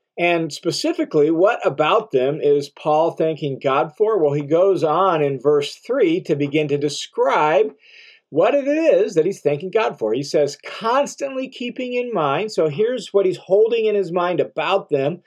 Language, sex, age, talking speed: English, male, 40-59, 175 wpm